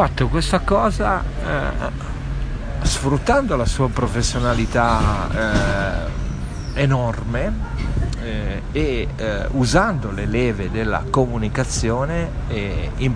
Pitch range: 110-135 Hz